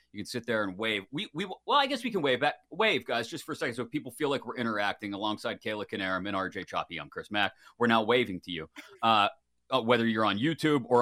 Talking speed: 260 wpm